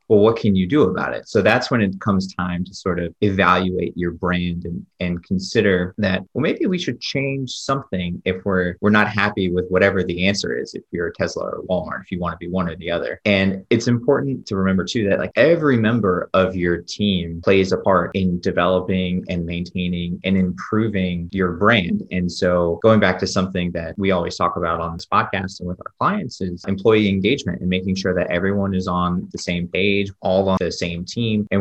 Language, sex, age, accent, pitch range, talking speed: English, male, 30-49, American, 90-100 Hz, 220 wpm